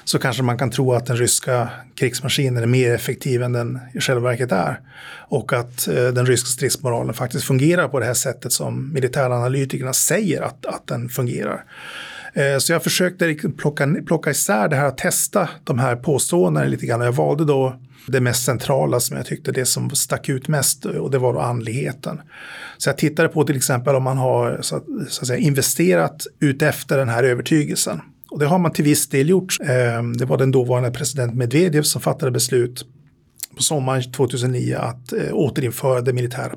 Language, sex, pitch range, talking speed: Swedish, male, 125-150 Hz, 185 wpm